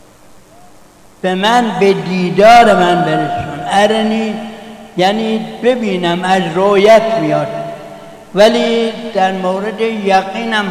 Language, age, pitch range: Persian, 60-79, 180-220 Hz